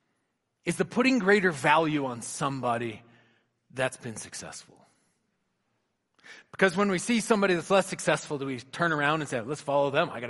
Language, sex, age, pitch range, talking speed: English, male, 40-59, 130-175 Hz, 170 wpm